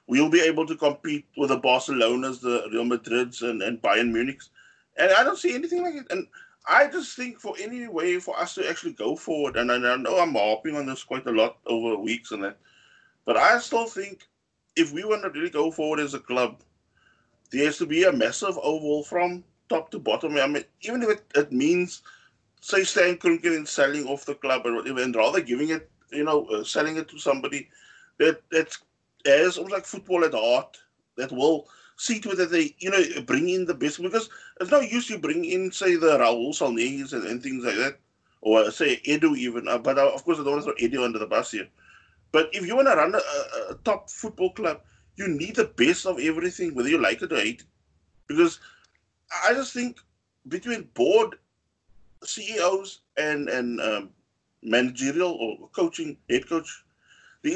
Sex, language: male, English